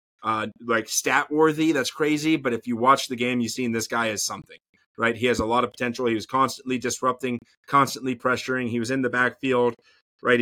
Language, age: English, 30-49